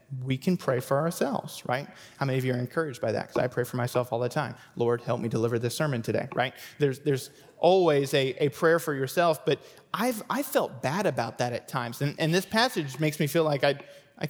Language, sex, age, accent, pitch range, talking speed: English, male, 20-39, American, 135-165 Hz, 240 wpm